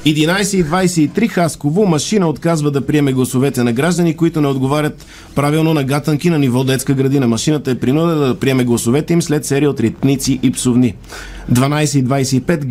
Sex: male